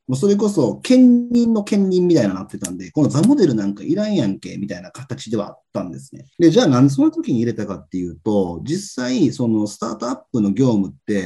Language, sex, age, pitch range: Japanese, male, 30-49, 100-150 Hz